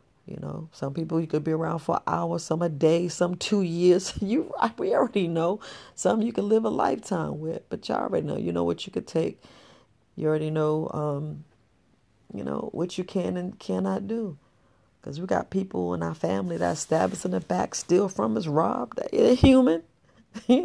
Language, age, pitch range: English, 40-59, 155-200 Hz